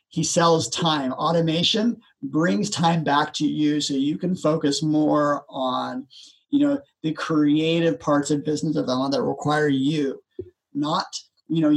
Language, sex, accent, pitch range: English, male, American, 140-170 Hz